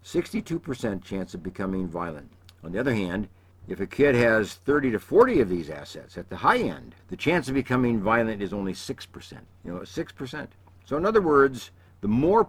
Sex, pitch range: male, 90-130 Hz